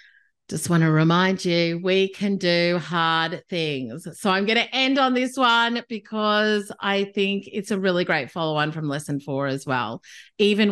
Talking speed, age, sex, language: 180 wpm, 30-49, female, English